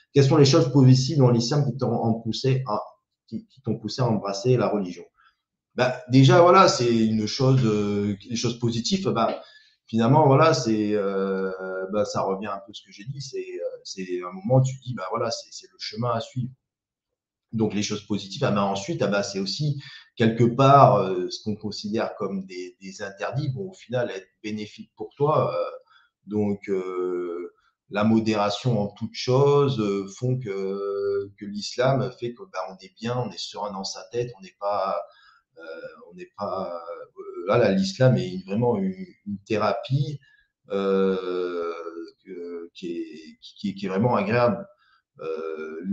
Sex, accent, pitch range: male, French, 100-135 Hz